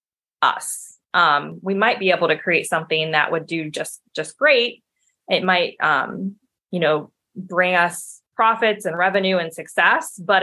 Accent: American